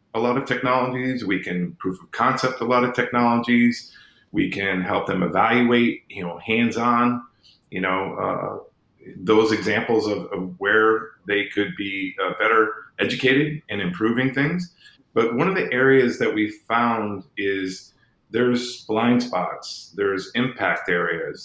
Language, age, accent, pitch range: English, 40-59, American, 95-120 Hz